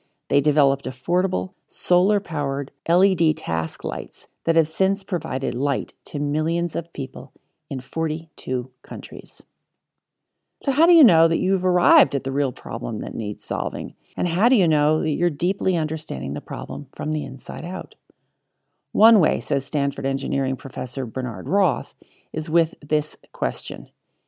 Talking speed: 150 wpm